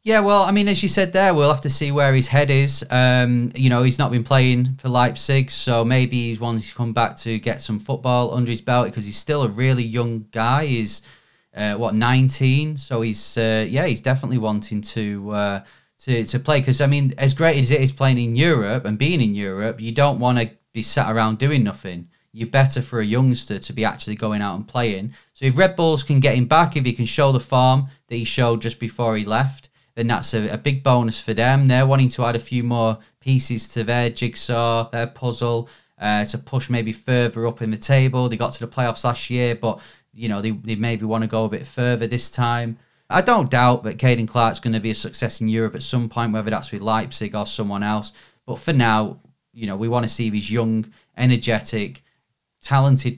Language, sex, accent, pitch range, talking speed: English, male, British, 110-130 Hz, 230 wpm